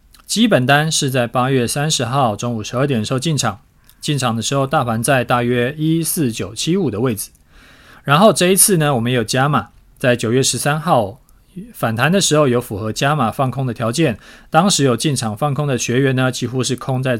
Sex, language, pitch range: male, Chinese, 115-155 Hz